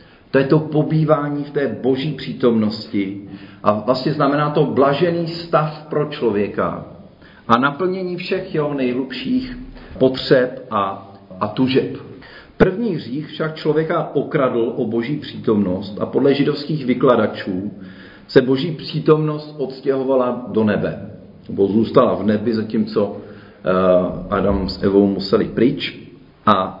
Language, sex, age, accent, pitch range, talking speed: Czech, male, 40-59, native, 105-150 Hz, 120 wpm